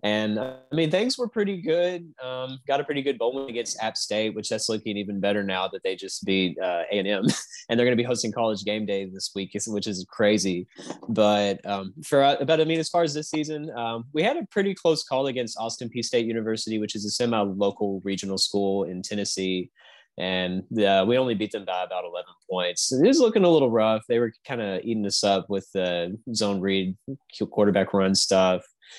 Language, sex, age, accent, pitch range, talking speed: English, male, 20-39, American, 95-115 Hz, 220 wpm